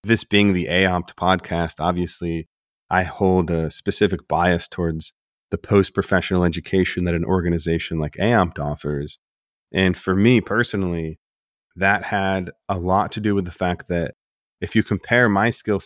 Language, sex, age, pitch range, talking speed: English, male, 30-49, 85-100 Hz, 150 wpm